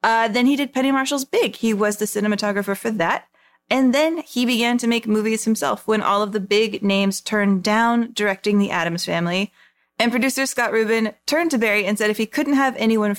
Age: 30-49